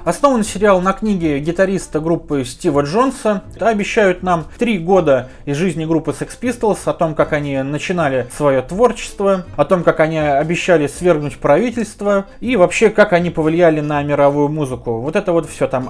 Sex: male